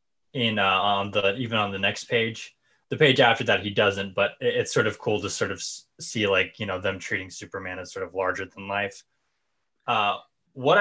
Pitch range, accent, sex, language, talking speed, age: 115-145 Hz, American, male, English, 210 wpm, 20-39